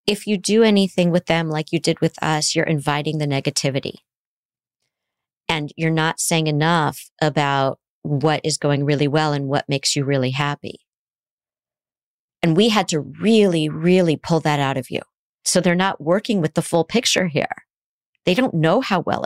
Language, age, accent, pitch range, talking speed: English, 40-59, American, 150-195 Hz, 180 wpm